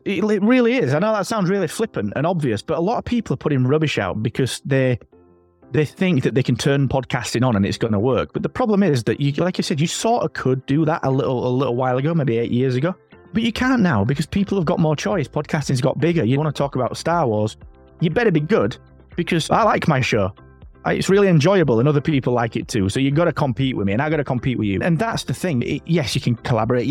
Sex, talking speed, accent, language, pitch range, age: male, 270 wpm, British, English, 110-155 Hz, 20-39